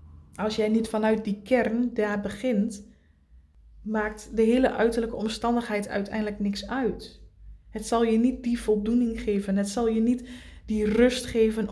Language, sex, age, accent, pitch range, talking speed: Dutch, female, 20-39, Dutch, 200-230 Hz, 155 wpm